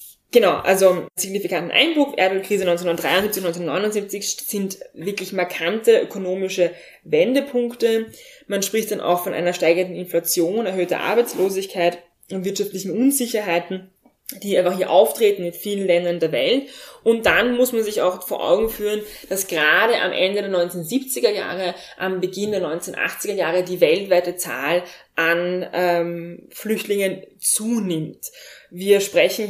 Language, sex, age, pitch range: German, female, 20-39, 175-205 Hz